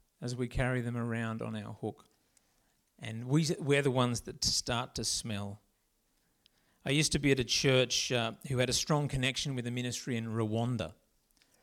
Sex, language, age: male, English, 50-69